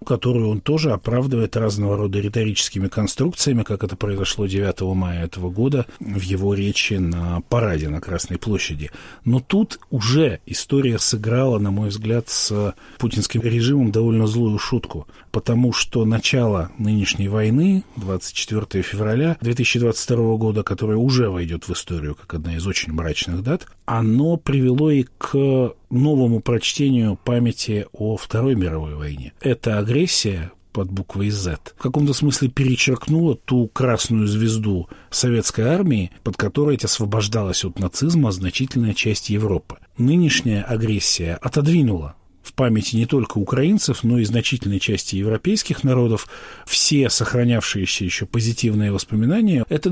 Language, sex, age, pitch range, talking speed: Russian, male, 40-59, 100-125 Hz, 130 wpm